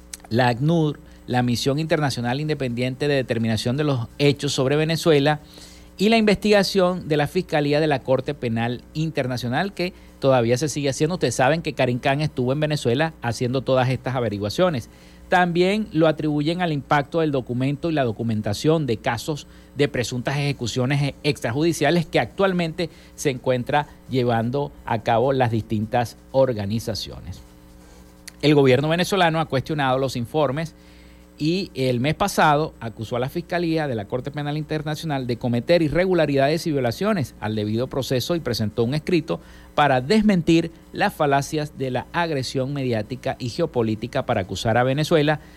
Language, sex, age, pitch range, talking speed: Spanish, male, 50-69, 115-155 Hz, 150 wpm